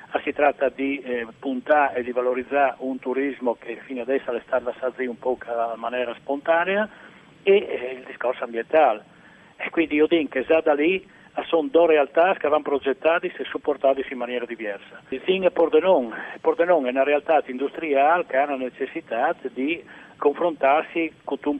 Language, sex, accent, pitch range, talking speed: Italian, male, native, 130-155 Hz, 170 wpm